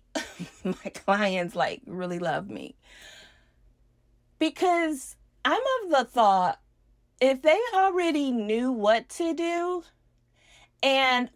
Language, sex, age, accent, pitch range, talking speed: English, female, 30-49, American, 200-300 Hz, 100 wpm